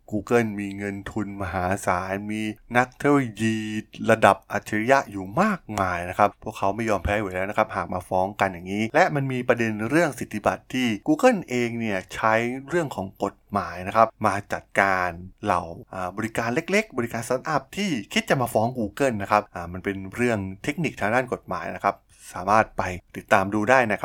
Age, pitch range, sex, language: 20-39, 95-115 Hz, male, Thai